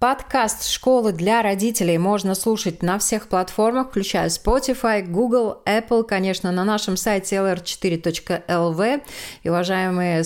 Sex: female